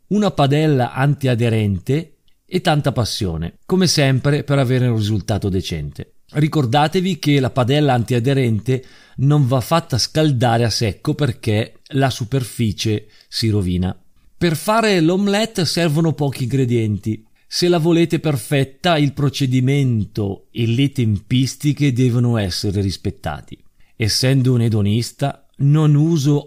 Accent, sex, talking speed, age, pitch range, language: native, male, 120 wpm, 40-59, 110-145 Hz, Italian